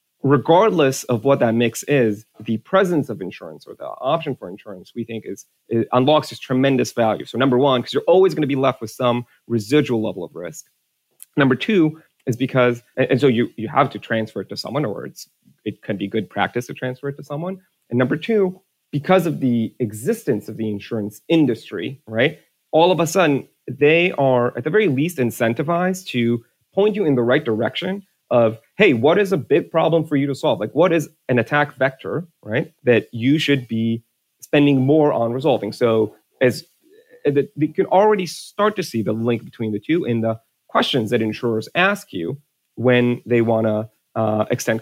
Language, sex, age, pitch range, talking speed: English, male, 30-49, 115-150 Hz, 200 wpm